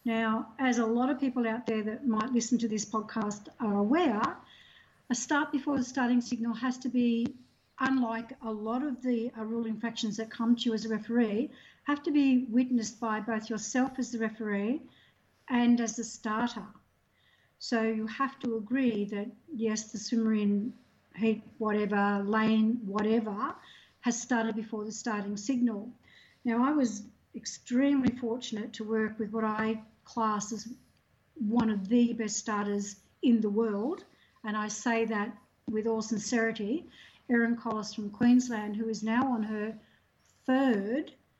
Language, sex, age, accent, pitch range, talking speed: English, female, 50-69, Australian, 215-245 Hz, 160 wpm